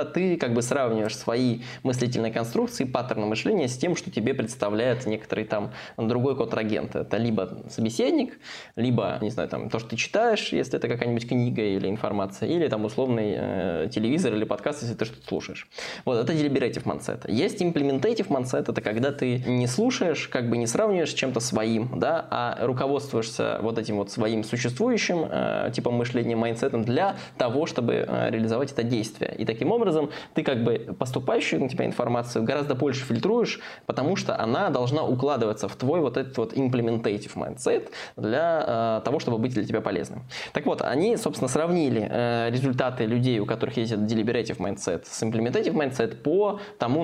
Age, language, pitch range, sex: 20-39, Russian, 110-135 Hz, male